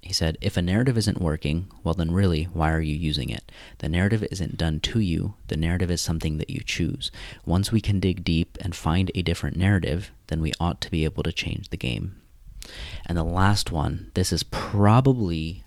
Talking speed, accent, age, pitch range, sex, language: 210 wpm, American, 30-49, 80-95 Hz, male, English